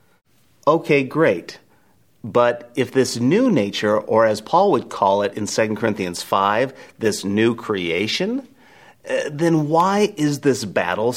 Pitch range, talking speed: 115-165 Hz, 140 wpm